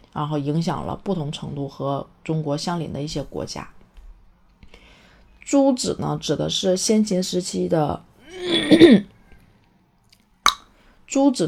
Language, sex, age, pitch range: Chinese, female, 30-49, 155-200 Hz